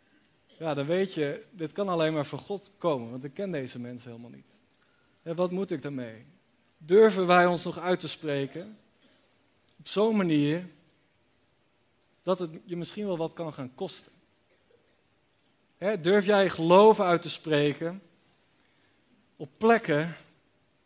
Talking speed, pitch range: 140 wpm, 155-210 Hz